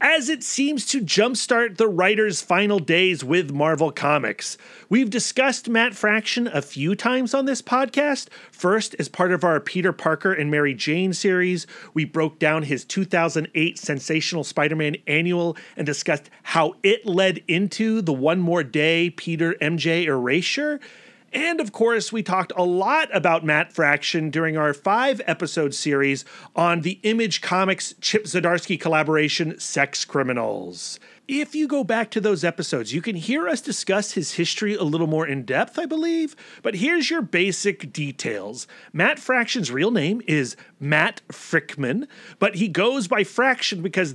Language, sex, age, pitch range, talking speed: English, male, 30-49, 160-225 Hz, 160 wpm